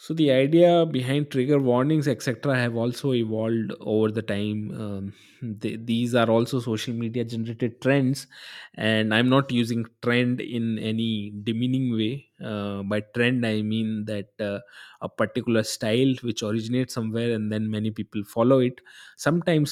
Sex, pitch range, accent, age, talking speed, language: male, 110-125 Hz, native, 20-39, 155 wpm, Hindi